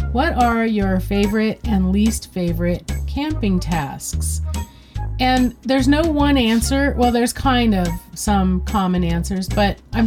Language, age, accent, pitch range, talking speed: English, 40-59, American, 180-225 Hz, 135 wpm